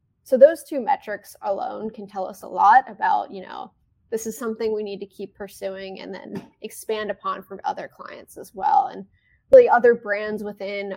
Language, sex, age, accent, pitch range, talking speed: English, female, 10-29, American, 205-280 Hz, 190 wpm